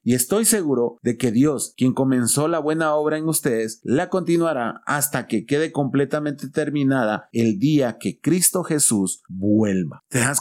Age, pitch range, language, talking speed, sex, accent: 40-59, 120-155 Hz, Spanish, 160 wpm, male, Mexican